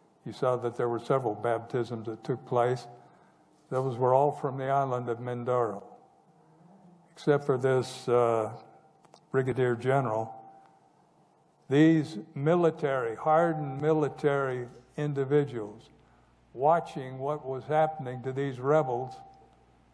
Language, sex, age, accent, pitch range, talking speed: English, male, 60-79, American, 105-145 Hz, 110 wpm